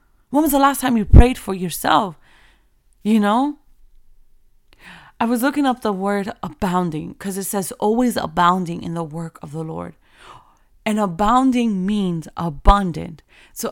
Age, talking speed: 30-49, 150 wpm